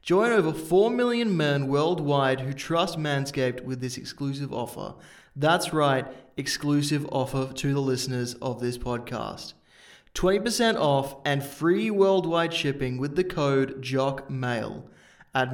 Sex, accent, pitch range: male, Australian, 135-175 Hz